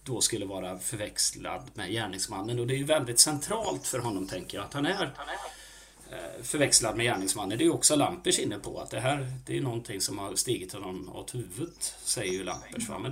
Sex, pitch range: male, 110-145 Hz